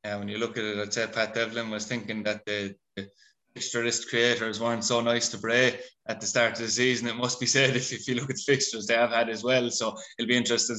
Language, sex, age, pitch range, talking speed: English, male, 20-39, 120-140 Hz, 265 wpm